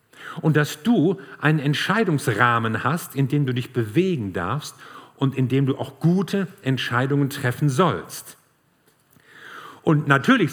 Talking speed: 130 wpm